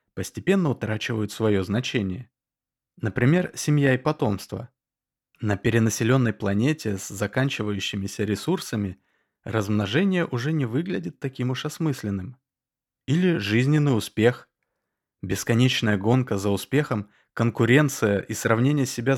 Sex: male